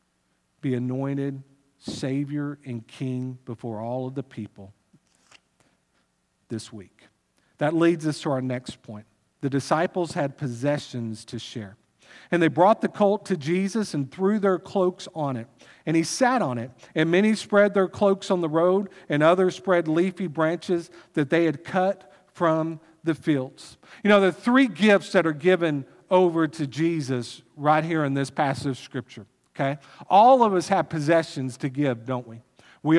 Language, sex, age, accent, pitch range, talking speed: English, male, 50-69, American, 140-185 Hz, 165 wpm